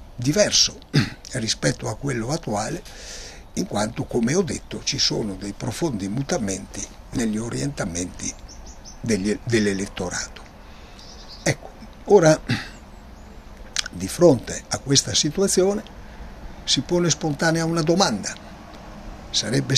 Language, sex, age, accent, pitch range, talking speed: Italian, male, 60-79, native, 105-160 Hz, 95 wpm